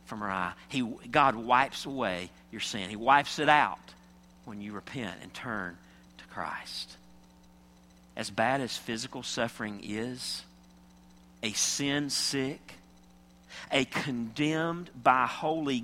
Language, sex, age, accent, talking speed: English, male, 40-59, American, 115 wpm